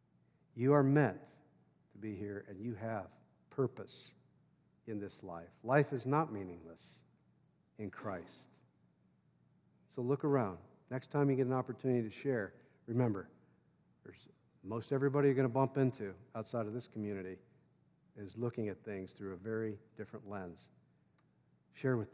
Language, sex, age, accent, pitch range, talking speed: English, male, 50-69, American, 105-145 Hz, 145 wpm